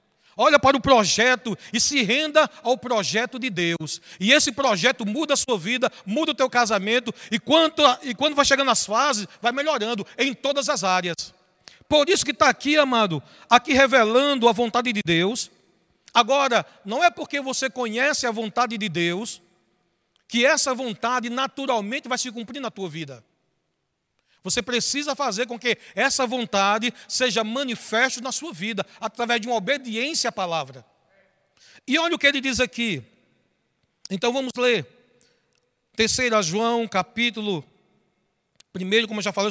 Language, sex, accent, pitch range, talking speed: Portuguese, male, Brazilian, 205-255 Hz, 160 wpm